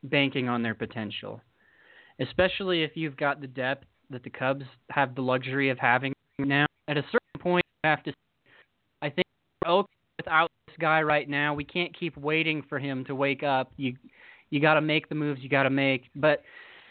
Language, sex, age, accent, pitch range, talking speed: English, male, 20-39, American, 130-160 Hz, 205 wpm